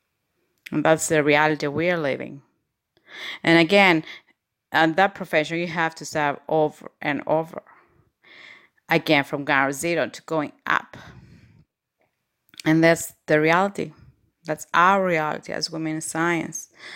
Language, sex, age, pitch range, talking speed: English, female, 30-49, 155-180 Hz, 130 wpm